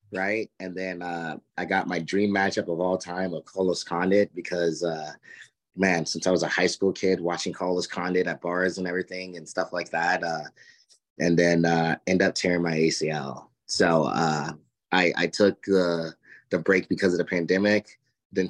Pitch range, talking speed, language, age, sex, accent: 85-95 Hz, 190 wpm, English, 20-39, male, American